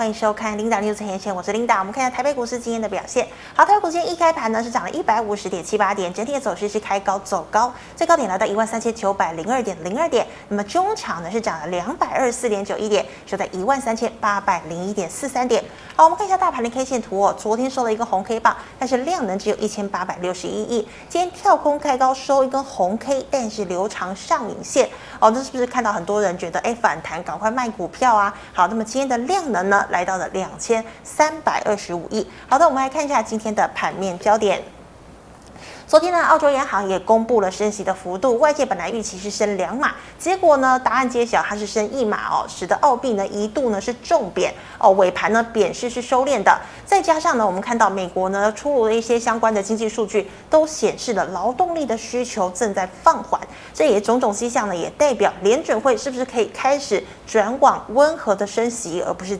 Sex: female